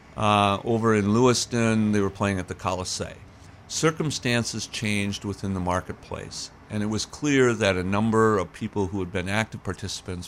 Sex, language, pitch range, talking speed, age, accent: male, English, 90-110 Hz, 170 wpm, 50-69, American